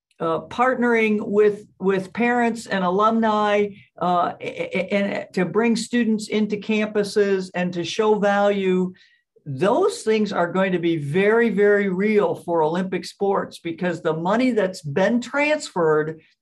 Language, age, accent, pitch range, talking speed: English, 60-79, American, 155-210 Hz, 130 wpm